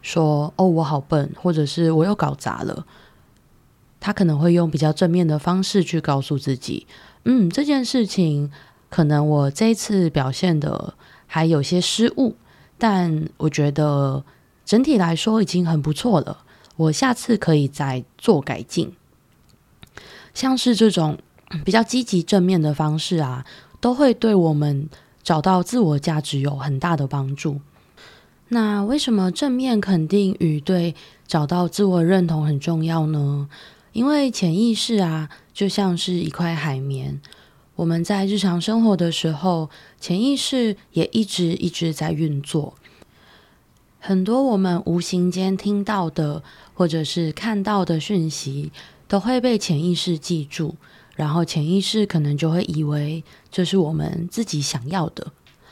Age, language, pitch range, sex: 20-39, Chinese, 150-195 Hz, female